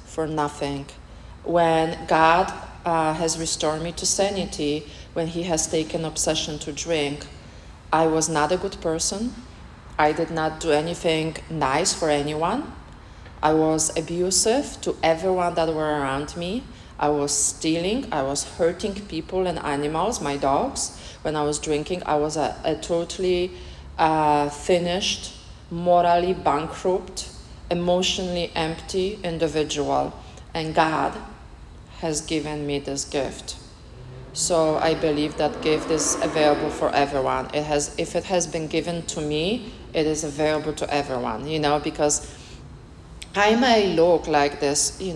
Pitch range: 145-170 Hz